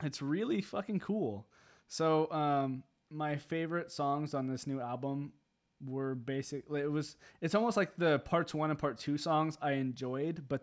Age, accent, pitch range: 20-39, American, 125-150 Hz